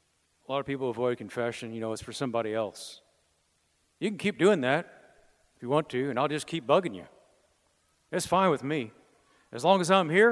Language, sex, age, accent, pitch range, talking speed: English, male, 50-69, American, 110-155 Hz, 210 wpm